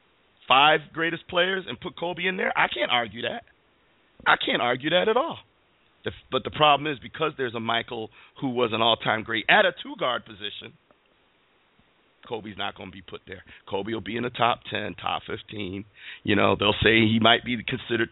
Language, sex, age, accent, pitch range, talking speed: English, male, 40-59, American, 105-120 Hz, 200 wpm